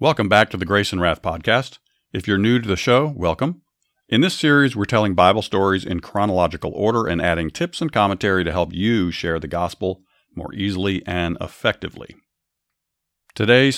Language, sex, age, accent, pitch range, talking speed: English, male, 50-69, American, 90-125 Hz, 180 wpm